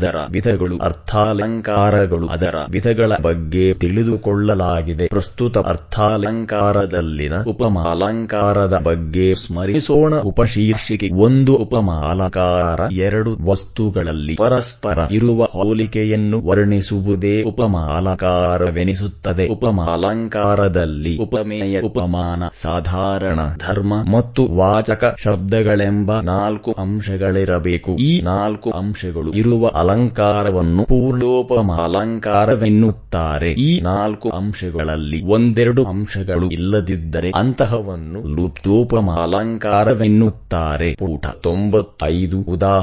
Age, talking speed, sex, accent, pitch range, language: 20-39, 65 wpm, male, Indian, 90-110 Hz, English